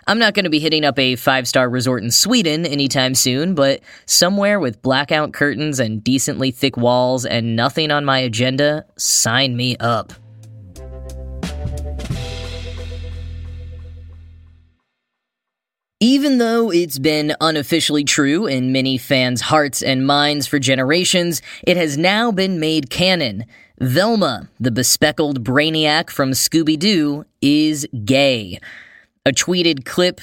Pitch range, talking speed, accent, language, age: 125-160 Hz, 125 wpm, American, English, 10-29